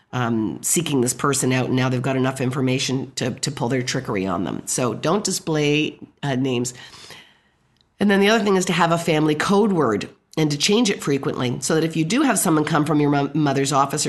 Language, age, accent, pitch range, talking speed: English, 50-69, American, 140-175 Hz, 220 wpm